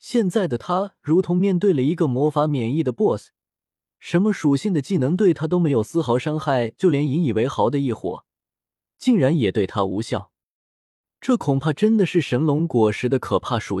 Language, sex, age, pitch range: Chinese, male, 20-39, 115-180 Hz